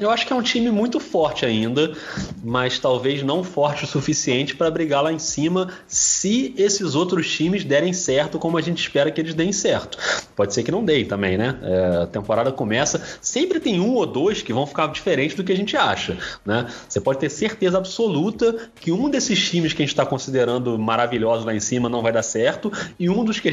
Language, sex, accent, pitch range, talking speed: Portuguese, male, Brazilian, 115-170 Hz, 220 wpm